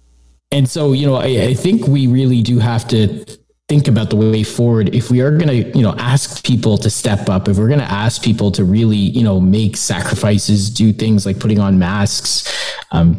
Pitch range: 100-125 Hz